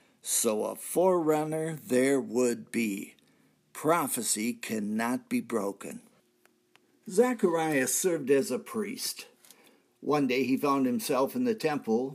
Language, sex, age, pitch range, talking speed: English, male, 60-79, 140-225 Hz, 115 wpm